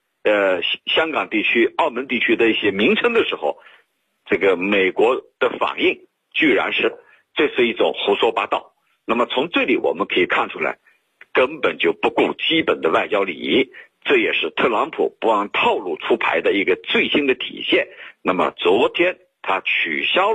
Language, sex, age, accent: Chinese, male, 50-69, native